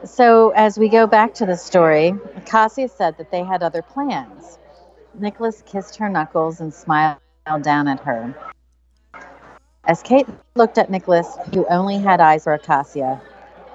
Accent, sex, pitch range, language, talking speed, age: American, female, 160-220 Hz, English, 155 wpm, 40-59